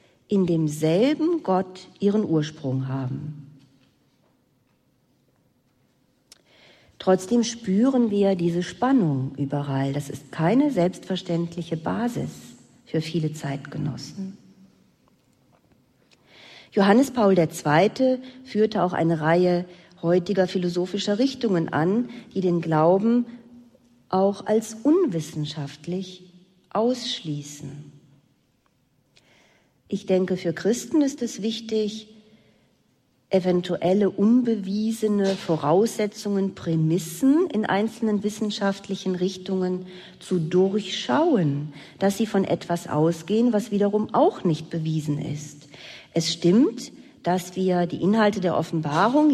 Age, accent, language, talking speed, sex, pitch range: 40-59, German, German, 90 wpm, female, 160-210 Hz